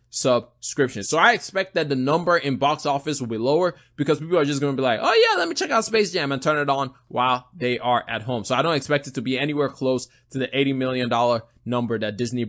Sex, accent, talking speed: male, American, 265 wpm